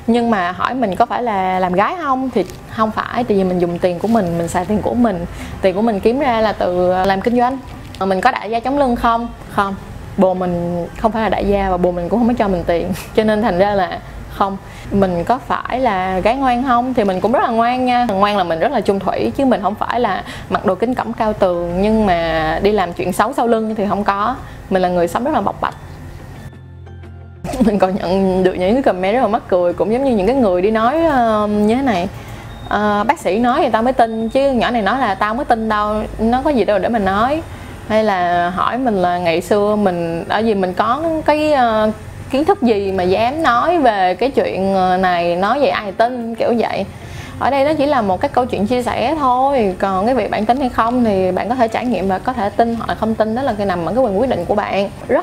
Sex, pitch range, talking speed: female, 185-240 Hz, 255 wpm